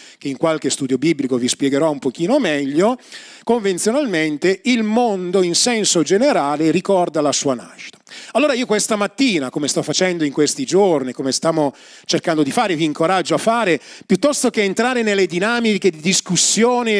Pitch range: 160-225 Hz